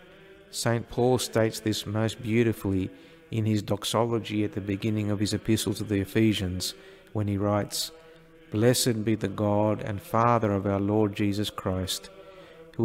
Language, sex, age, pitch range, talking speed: English, male, 50-69, 105-130 Hz, 155 wpm